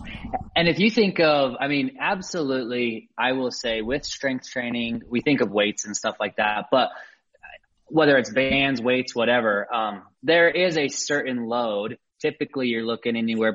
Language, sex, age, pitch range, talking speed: English, male, 20-39, 110-135 Hz, 170 wpm